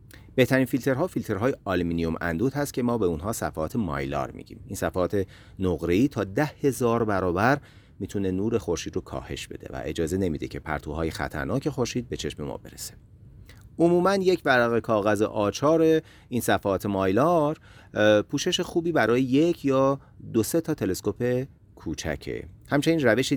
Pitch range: 90-130 Hz